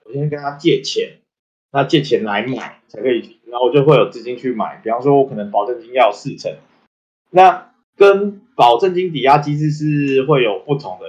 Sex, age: male, 20-39